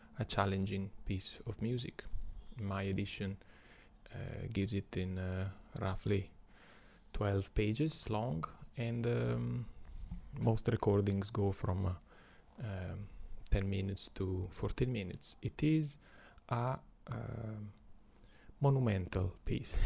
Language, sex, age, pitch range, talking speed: English, male, 30-49, 100-125 Hz, 105 wpm